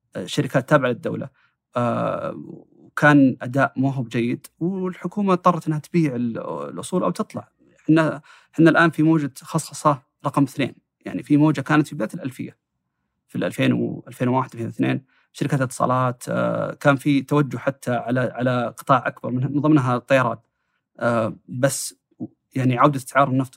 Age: 30-49